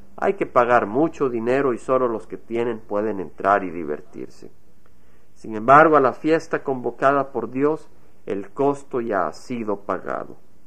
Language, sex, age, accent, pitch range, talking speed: Spanish, male, 50-69, Mexican, 125-175 Hz, 160 wpm